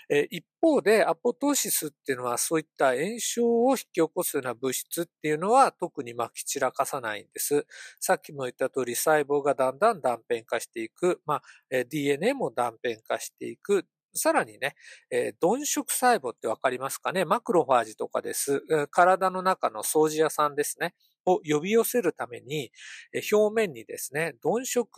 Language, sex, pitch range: Japanese, male, 150-240 Hz